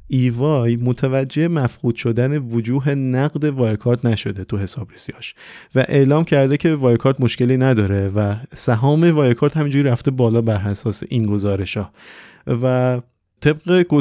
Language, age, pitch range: Persian, 30-49, 110-140 Hz